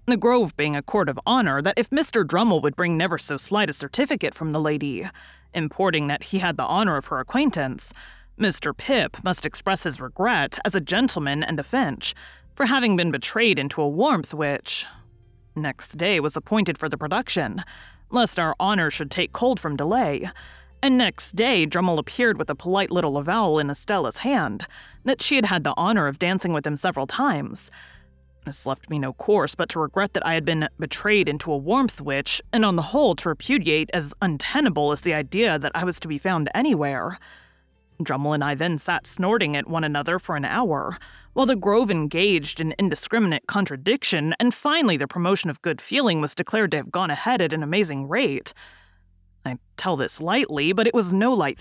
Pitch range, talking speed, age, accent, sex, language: 150-210 Hz, 200 wpm, 30-49, American, female, English